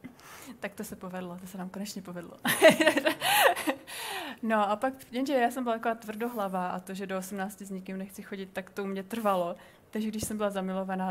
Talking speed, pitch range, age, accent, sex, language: 200 wpm, 190-230 Hz, 30-49, native, female, Czech